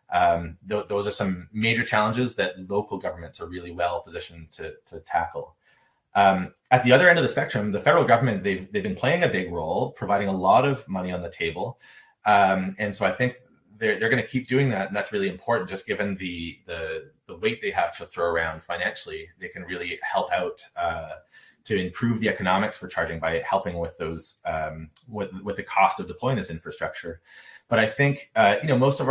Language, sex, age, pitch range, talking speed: English, male, 30-49, 95-125 Hz, 215 wpm